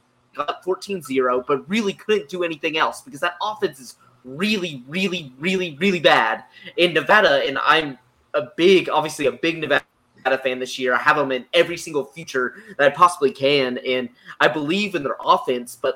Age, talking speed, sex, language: 20-39, 180 wpm, male, English